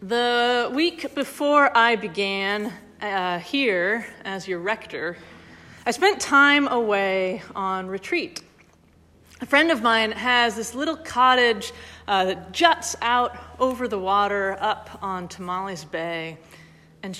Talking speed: 125 wpm